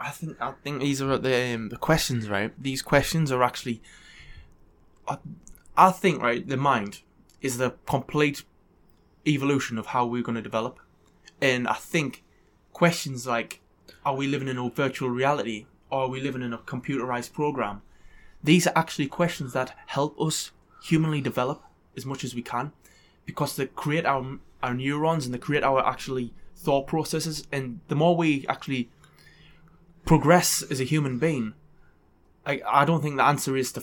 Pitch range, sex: 120-145 Hz, male